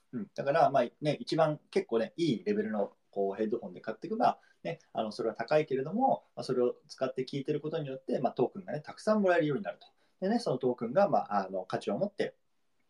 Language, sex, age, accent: Japanese, male, 20-39, native